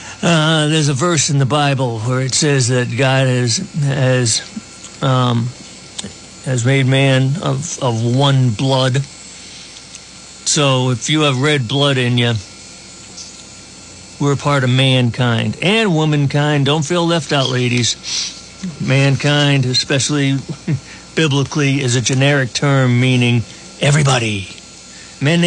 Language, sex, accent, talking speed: English, male, American, 125 wpm